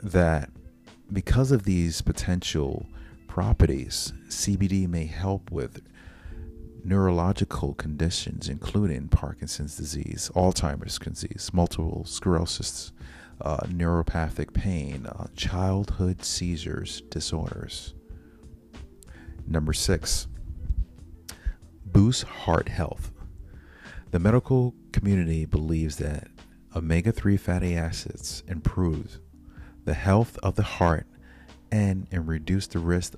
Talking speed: 90 wpm